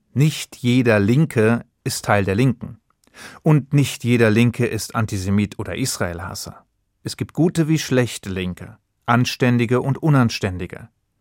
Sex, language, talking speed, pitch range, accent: male, German, 130 wpm, 110-140 Hz, German